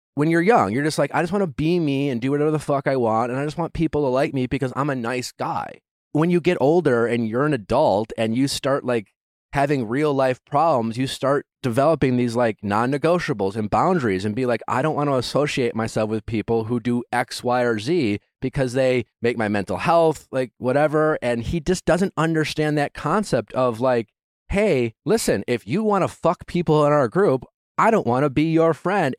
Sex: male